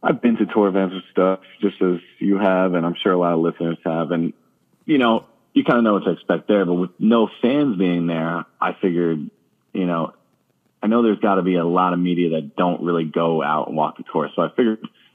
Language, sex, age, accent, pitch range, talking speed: English, male, 30-49, American, 85-100 Hz, 245 wpm